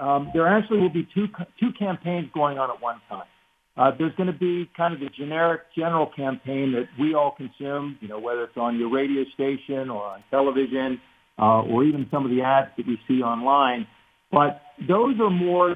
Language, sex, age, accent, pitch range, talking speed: English, male, 50-69, American, 130-175 Hz, 205 wpm